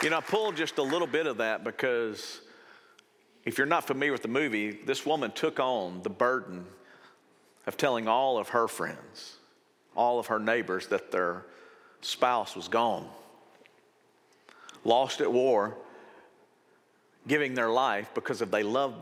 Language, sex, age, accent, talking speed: English, male, 50-69, American, 150 wpm